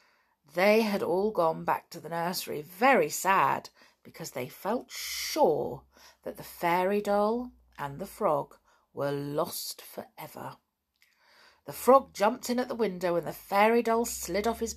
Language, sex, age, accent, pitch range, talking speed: English, female, 50-69, British, 180-280 Hz, 155 wpm